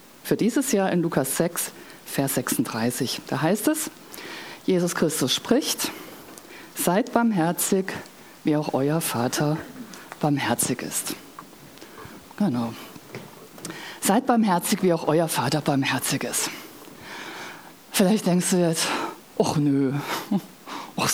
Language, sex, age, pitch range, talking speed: German, female, 50-69, 150-205 Hz, 110 wpm